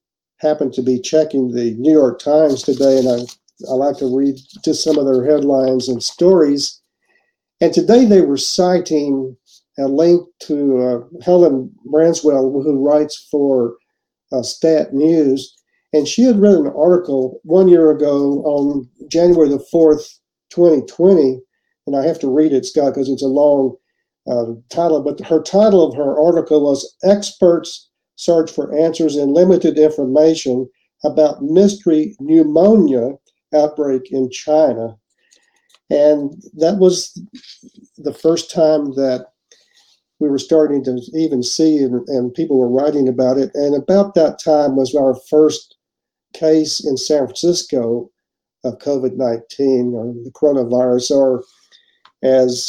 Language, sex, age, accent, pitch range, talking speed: English, male, 50-69, American, 130-165 Hz, 140 wpm